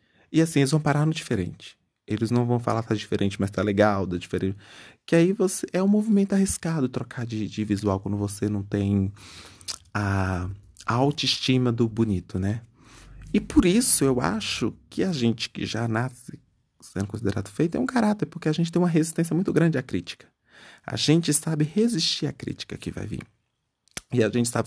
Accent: Brazilian